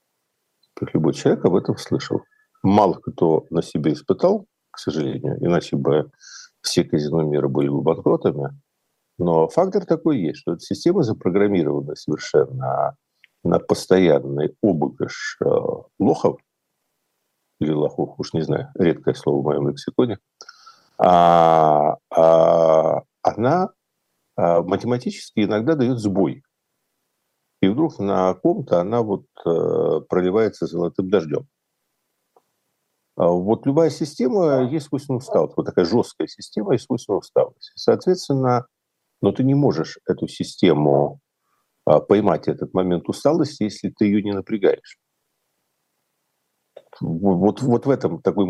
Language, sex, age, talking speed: Russian, male, 50-69, 120 wpm